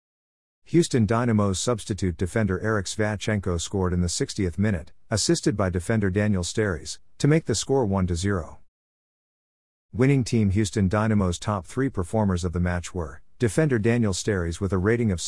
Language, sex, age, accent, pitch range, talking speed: English, male, 50-69, American, 90-115 Hz, 155 wpm